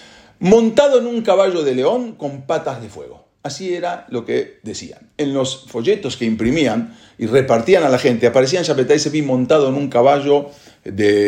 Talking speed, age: 170 wpm, 40-59